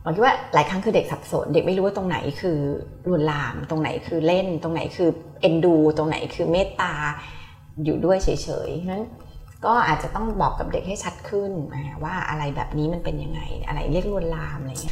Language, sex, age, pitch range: Thai, female, 20-39, 150-200 Hz